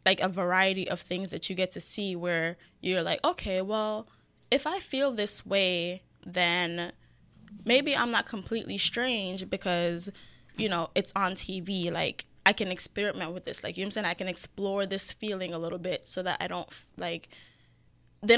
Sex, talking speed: female, 185 wpm